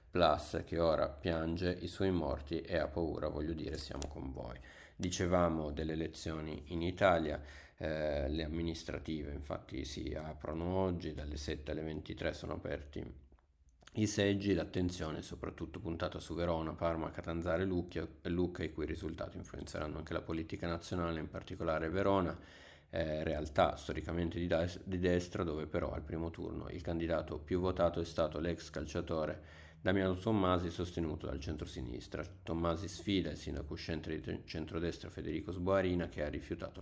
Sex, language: male, Italian